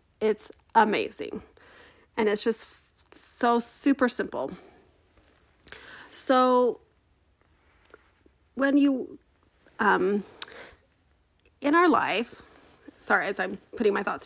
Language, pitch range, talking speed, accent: English, 205-290 Hz, 90 wpm, American